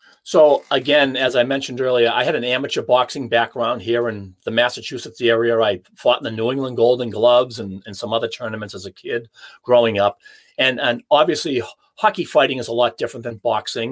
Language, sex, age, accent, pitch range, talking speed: English, male, 40-59, American, 115-140 Hz, 200 wpm